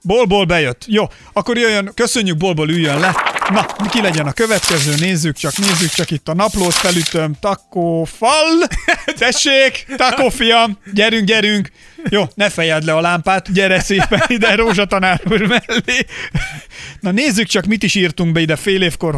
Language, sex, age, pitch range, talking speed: Hungarian, male, 30-49, 155-200 Hz, 155 wpm